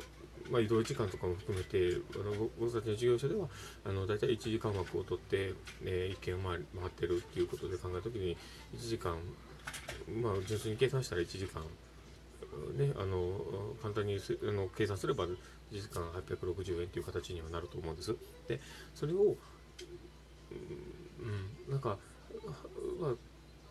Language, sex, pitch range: Japanese, male, 90-120 Hz